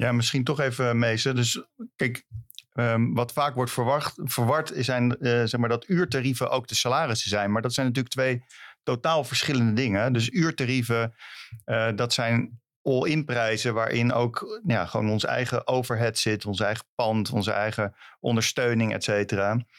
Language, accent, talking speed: Dutch, Dutch, 150 wpm